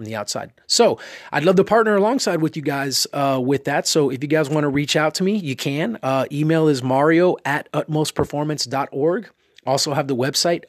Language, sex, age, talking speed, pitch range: English, male, 30-49, 200 wpm, 140-170 Hz